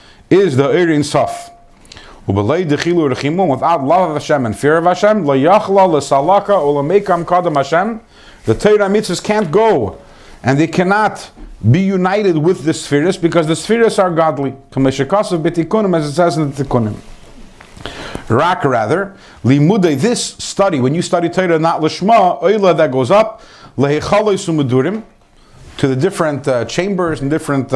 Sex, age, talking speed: male, 50-69, 120 wpm